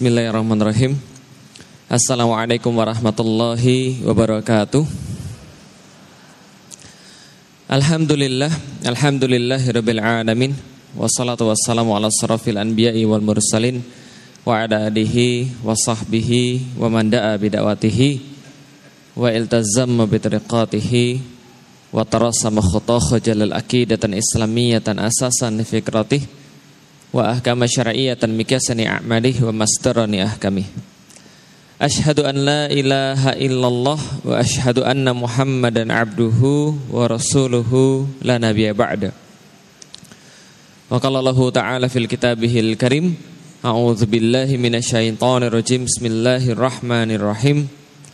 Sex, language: male, Indonesian